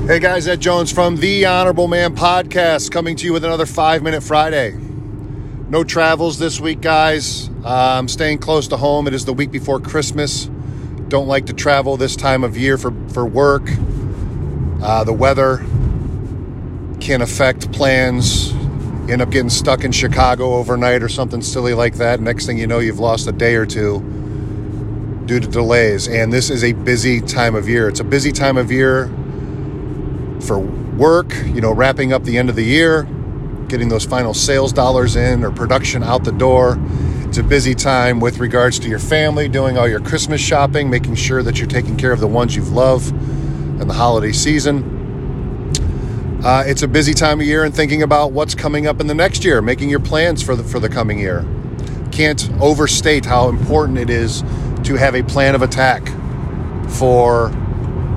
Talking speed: 185 wpm